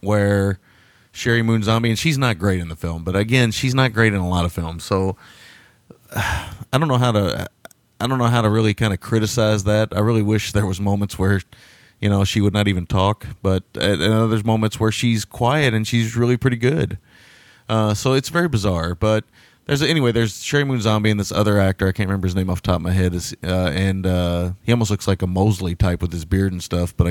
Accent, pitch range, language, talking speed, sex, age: American, 95-115 Hz, English, 240 wpm, male, 30-49